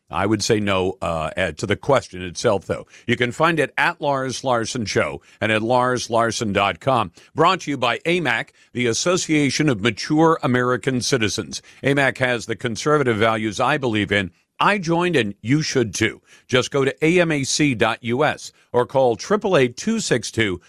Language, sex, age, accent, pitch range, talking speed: English, male, 50-69, American, 110-155 Hz, 155 wpm